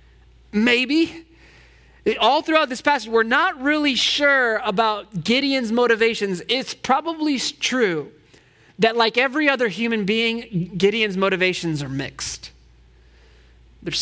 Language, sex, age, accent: English, male, 20-39, American